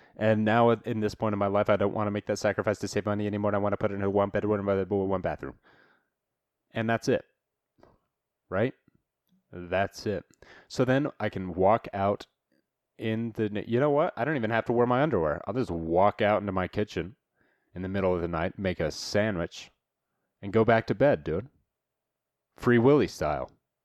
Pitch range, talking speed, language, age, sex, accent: 95-120 Hz, 205 wpm, English, 30-49, male, American